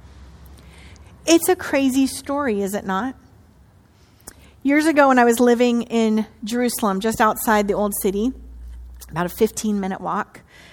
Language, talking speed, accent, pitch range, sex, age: English, 135 wpm, American, 195-250 Hz, female, 30-49